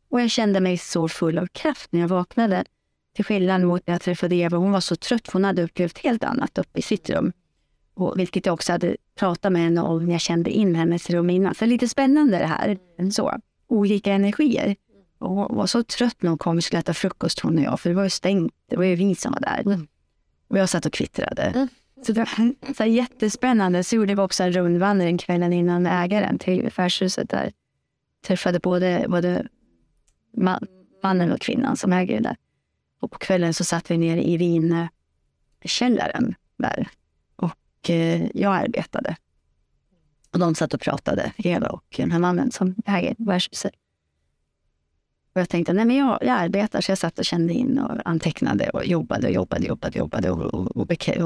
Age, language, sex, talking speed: 30-49, Swedish, female, 195 wpm